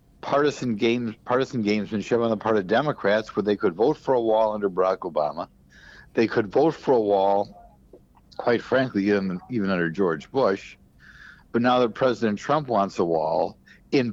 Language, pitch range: English, 105-135 Hz